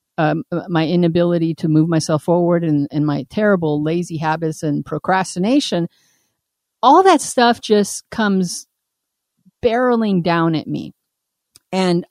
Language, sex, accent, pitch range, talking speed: English, female, American, 155-190 Hz, 125 wpm